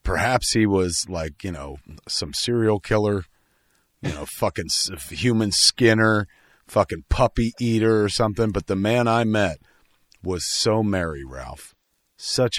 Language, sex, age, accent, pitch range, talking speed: English, male, 40-59, American, 80-105 Hz, 140 wpm